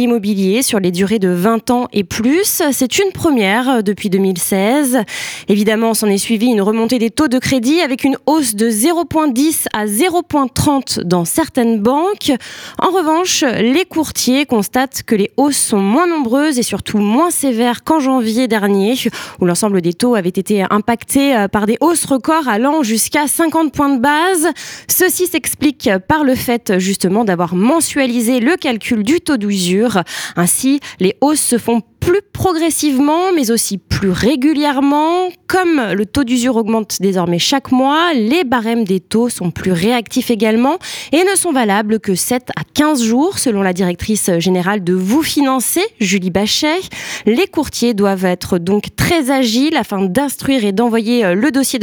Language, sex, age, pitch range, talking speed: French, female, 20-39, 210-295 Hz, 165 wpm